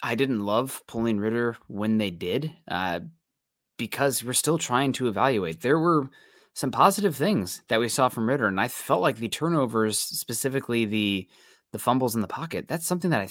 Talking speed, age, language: 190 wpm, 20-39, English